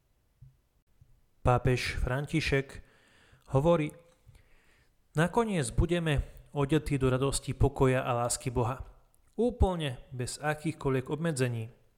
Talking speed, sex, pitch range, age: 80 wpm, male, 125-150 Hz, 30-49